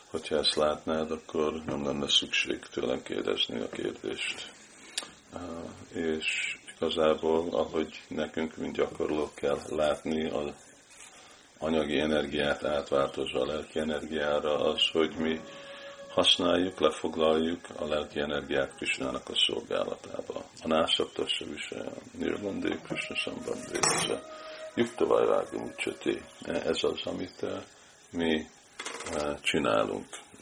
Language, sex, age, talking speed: Hungarian, male, 50-69, 105 wpm